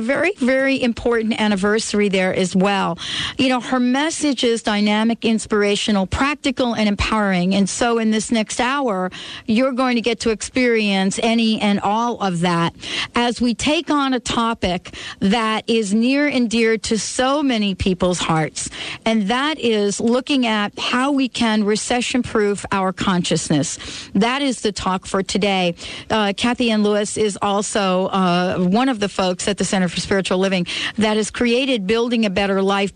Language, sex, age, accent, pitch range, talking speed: English, female, 50-69, American, 195-235 Hz, 170 wpm